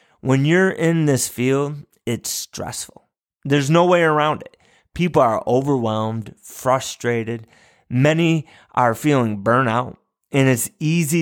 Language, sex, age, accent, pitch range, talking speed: English, male, 30-49, American, 115-145 Hz, 125 wpm